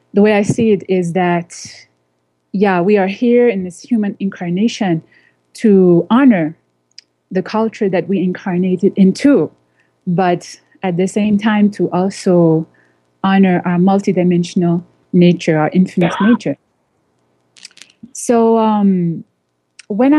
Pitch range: 165-210 Hz